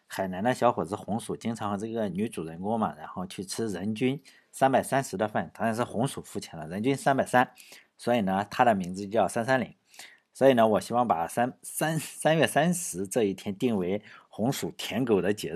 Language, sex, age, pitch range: Chinese, male, 50-69, 100-140 Hz